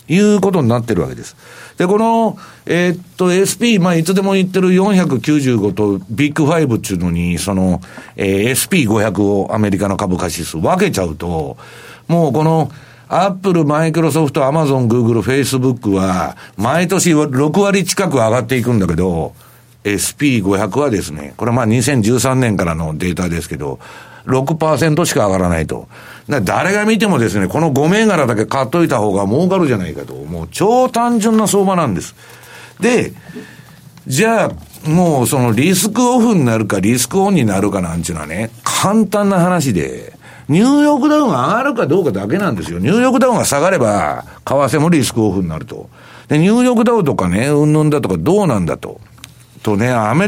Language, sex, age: Japanese, male, 60-79